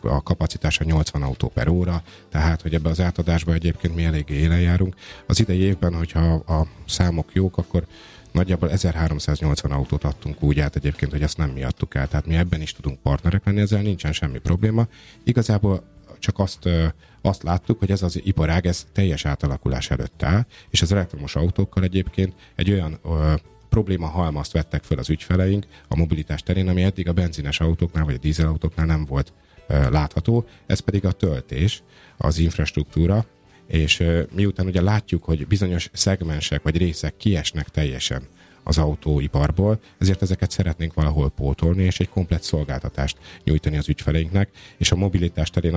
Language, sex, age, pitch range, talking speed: Hungarian, male, 30-49, 75-95 Hz, 160 wpm